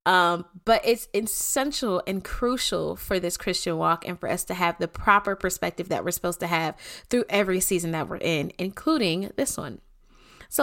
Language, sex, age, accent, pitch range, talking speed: English, female, 20-39, American, 180-245 Hz, 185 wpm